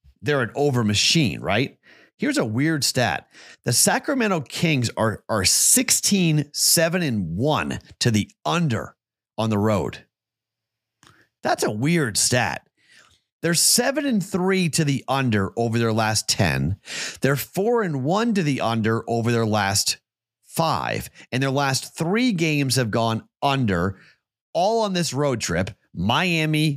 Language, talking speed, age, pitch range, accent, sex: English, 145 wpm, 40-59, 115-160 Hz, American, male